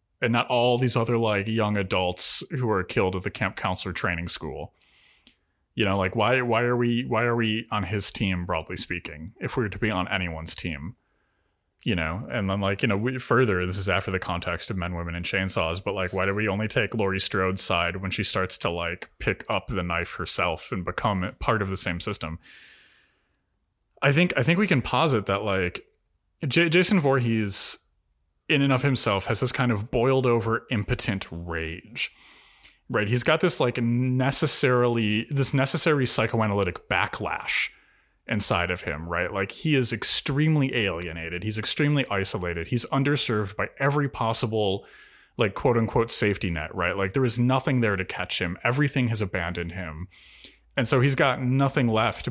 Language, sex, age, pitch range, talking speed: English, male, 30-49, 95-125 Hz, 185 wpm